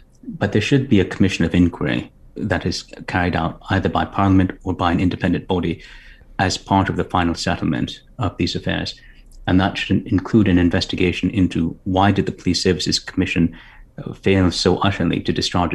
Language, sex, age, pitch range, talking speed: English, male, 30-49, 85-95 Hz, 180 wpm